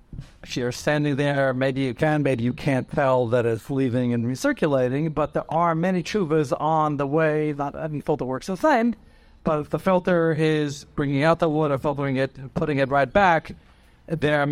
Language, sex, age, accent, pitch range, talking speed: English, male, 60-79, American, 140-175 Hz, 205 wpm